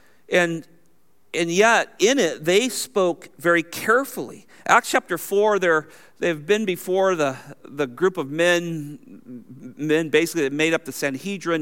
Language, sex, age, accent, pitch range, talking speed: English, male, 50-69, American, 160-235 Hz, 135 wpm